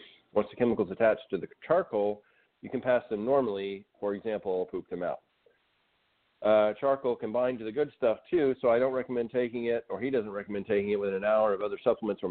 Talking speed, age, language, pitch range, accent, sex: 225 wpm, 40-59, English, 100-125 Hz, American, male